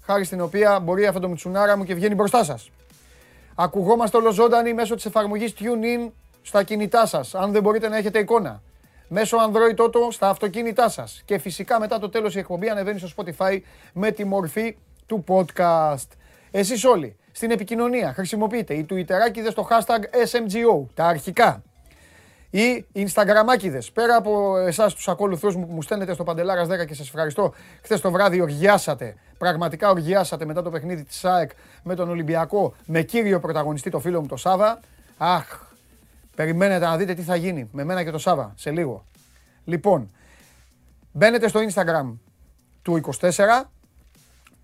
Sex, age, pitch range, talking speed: male, 30-49, 165-215 Hz, 160 wpm